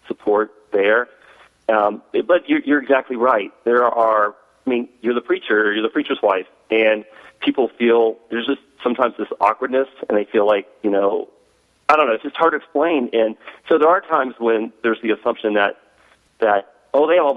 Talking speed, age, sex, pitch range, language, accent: 195 wpm, 40-59, male, 110-140 Hz, English, American